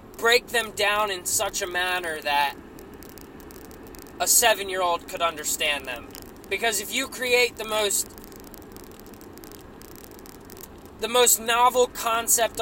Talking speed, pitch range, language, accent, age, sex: 110 wpm, 170-230 Hz, English, American, 20-39, male